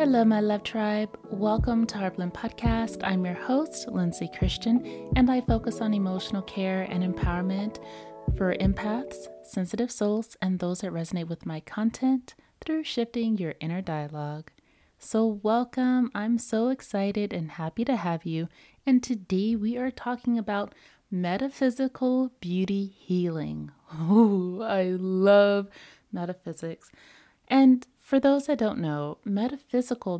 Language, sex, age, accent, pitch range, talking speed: English, female, 30-49, American, 180-235 Hz, 135 wpm